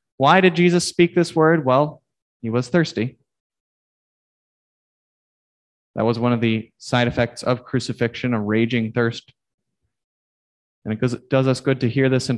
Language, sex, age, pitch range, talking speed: English, male, 20-39, 125-155 Hz, 155 wpm